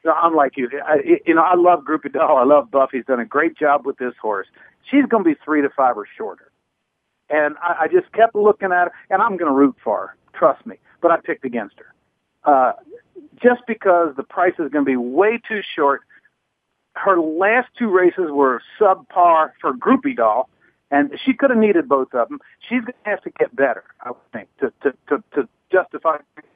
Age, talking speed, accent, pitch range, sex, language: 50-69, 220 wpm, American, 145-235 Hz, male, English